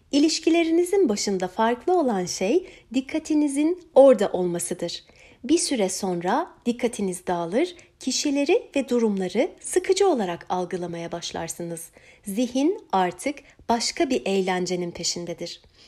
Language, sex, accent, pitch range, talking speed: Turkish, female, native, 190-310 Hz, 100 wpm